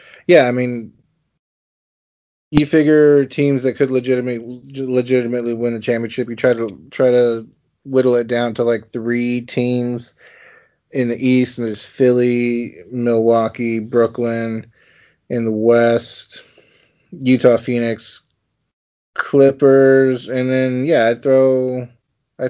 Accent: American